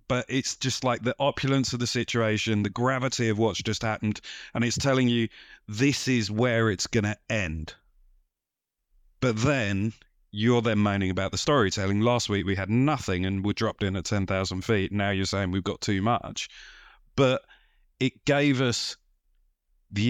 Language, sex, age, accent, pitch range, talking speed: English, male, 30-49, British, 95-120 Hz, 175 wpm